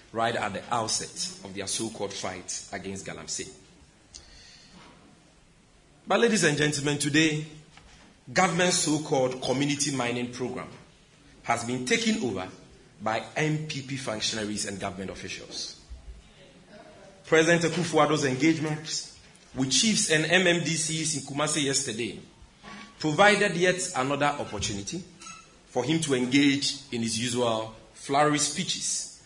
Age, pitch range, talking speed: 40-59, 120-165 Hz, 110 wpm